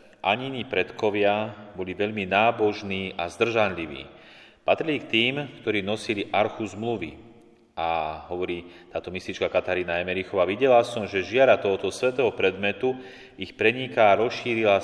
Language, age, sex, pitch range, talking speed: Slovak, 30-49, male, 90-110 Hz, 125 wpm